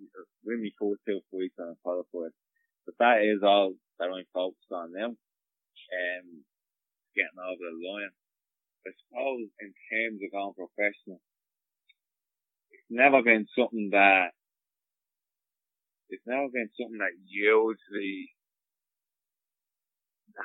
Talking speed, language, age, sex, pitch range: 125 wpm, English, 20-39, male, 90-115 Hz